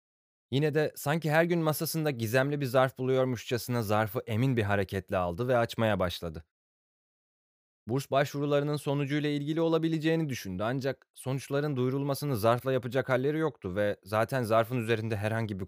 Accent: native